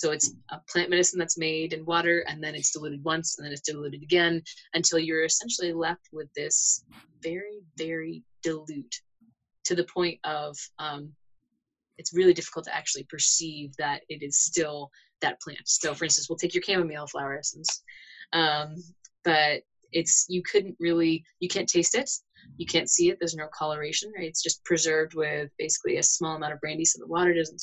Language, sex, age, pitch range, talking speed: English, female, 20-39, 155-185 Hz, 185 wpm